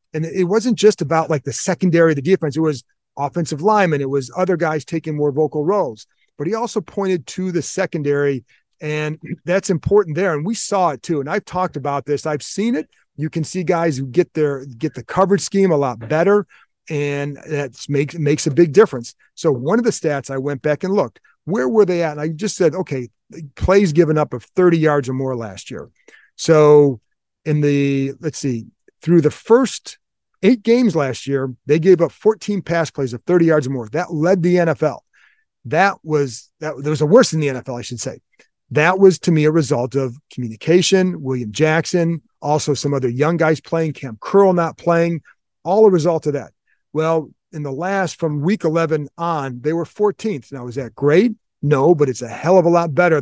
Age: 40-59